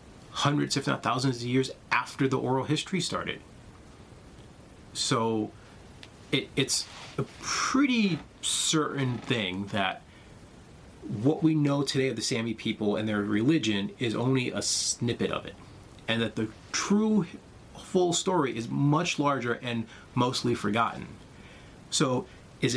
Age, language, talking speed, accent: 30-49, English, 130 wpm, American